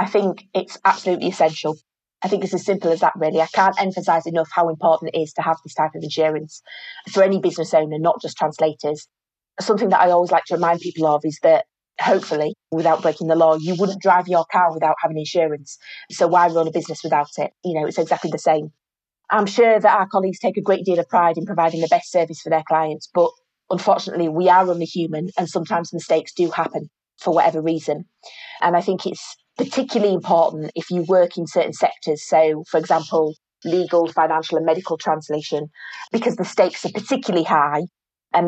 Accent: British